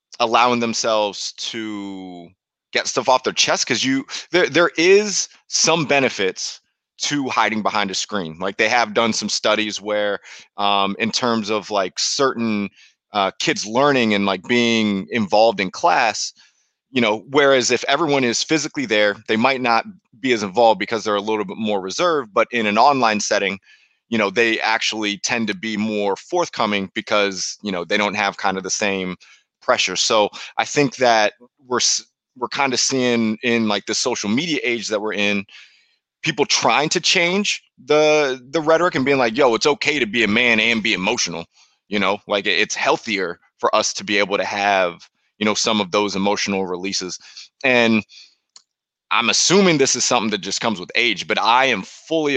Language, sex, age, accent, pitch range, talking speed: English, male, 30-49, American, 100-130 Hz, 185 wpm